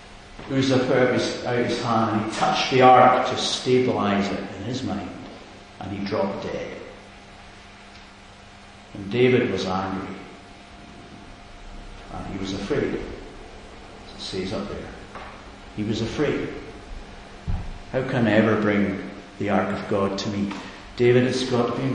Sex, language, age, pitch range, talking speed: male, English, 60-79, 100-130 Hz, 140 wpm